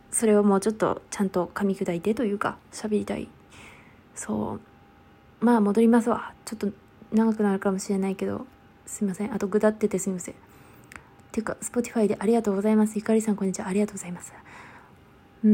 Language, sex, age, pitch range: Japanese, female, 20-39, 205-235 Hz